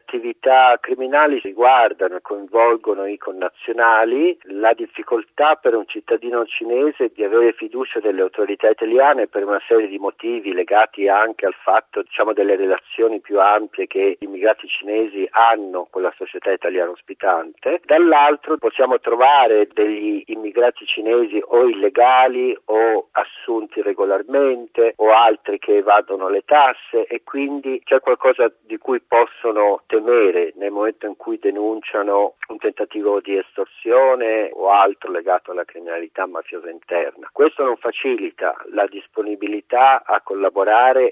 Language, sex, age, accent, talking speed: Italian, male, 50-69, native, 135 wpm